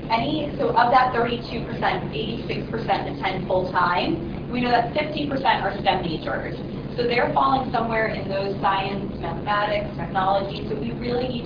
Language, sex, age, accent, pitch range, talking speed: English, female, 20-39, American, 185-250 Hz, 145 wpm